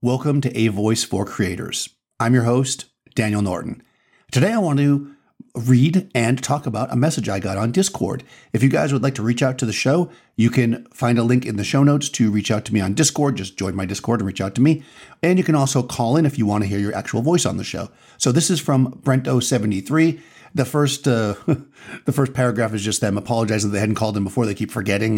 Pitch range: 110-140 Hz